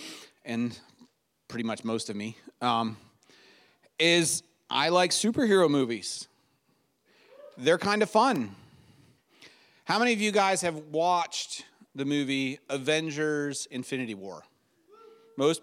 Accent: American